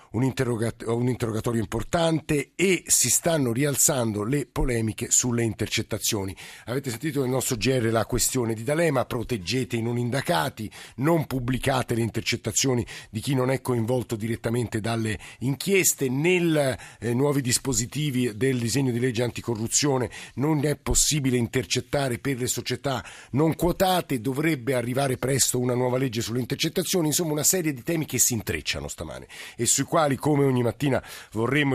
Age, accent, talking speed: 50-69, native, 145 wpm